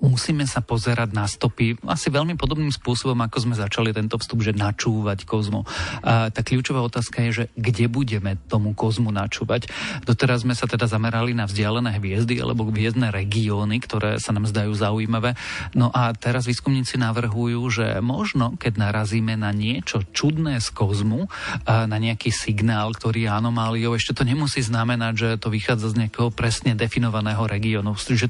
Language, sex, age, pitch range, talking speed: Slovak, male, 40-59, 110-125 Hz, 160 wpm